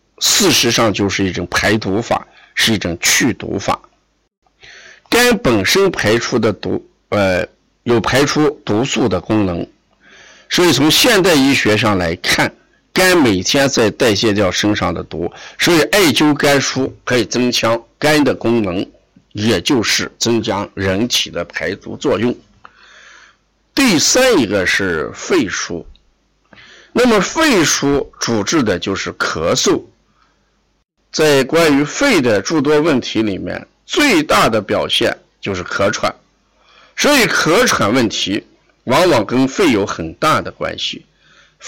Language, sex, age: Chinese, male, 50-69